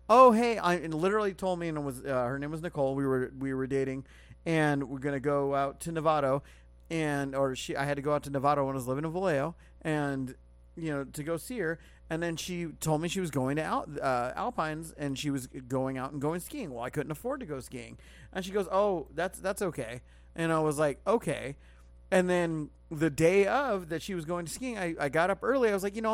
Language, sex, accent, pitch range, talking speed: English, male, American, 130-180 Hz, 255 wpm